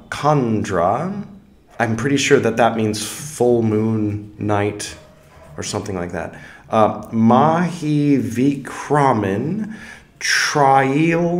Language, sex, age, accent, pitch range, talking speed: English, male, 20-39, American, 105-140 Hz, 95 wpm